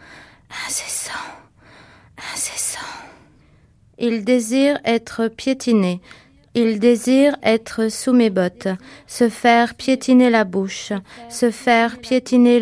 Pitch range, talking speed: 220-250 Hz, 95 wpm